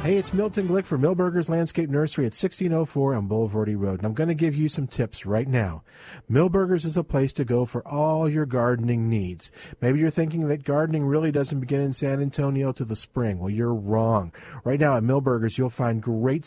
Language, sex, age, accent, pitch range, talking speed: English, male, 50-69, American, 125-190 Hz, 210 wpm